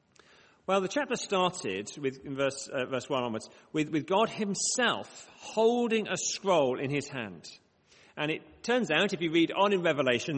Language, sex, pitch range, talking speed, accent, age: English, male, 135-195 Hz, 180 wpm, British, 40-59